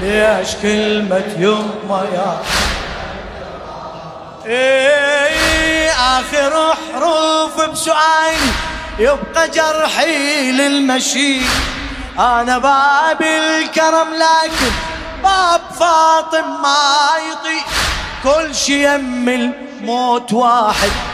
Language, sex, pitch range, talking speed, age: Arabic, male, 200-280 Hz, 70 wpm, 30-49